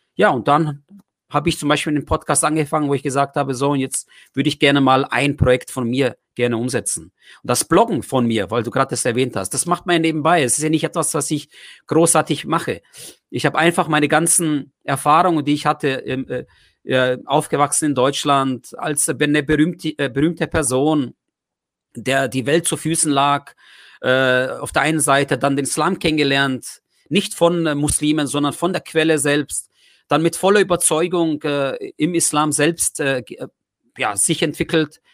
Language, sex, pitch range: German, male, 140-165 Hz